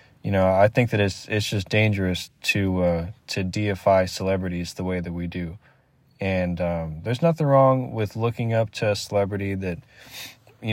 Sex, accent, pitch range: male, American, 100-120 Hz